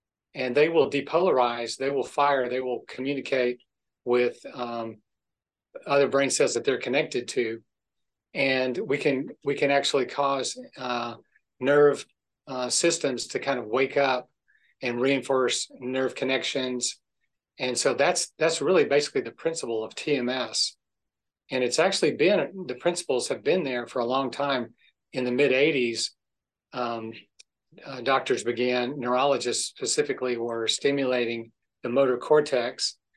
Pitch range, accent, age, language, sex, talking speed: 120-140 Hz, American, 40-59, English, male, 140 wpm